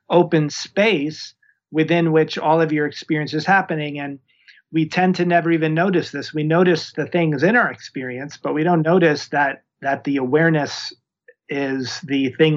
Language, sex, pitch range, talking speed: English, male, 145-170 Hz, 170 wpm